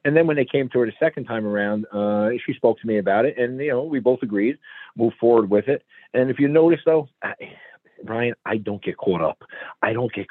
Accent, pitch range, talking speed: American, 115-160 Hz, 245 wpm